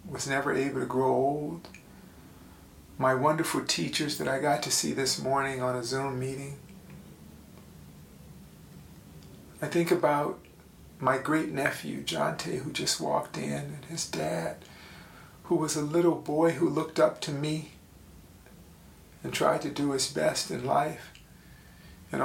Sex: male